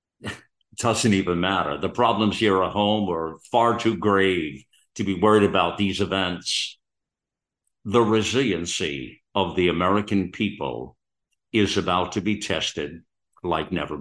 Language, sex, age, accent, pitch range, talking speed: English, male, 50-69, American, 90-110 Hz, 135 wpm